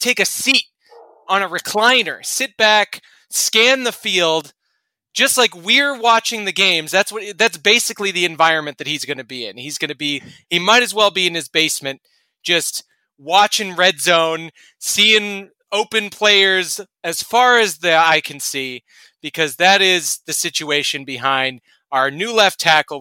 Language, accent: English, American